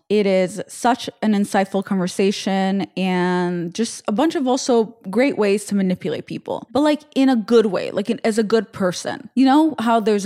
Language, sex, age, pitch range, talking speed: English, female, 20-39, 180-235 Hz, 185 wpm